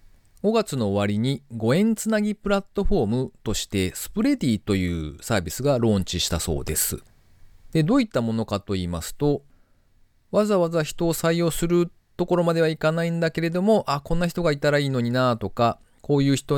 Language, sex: Japanese, male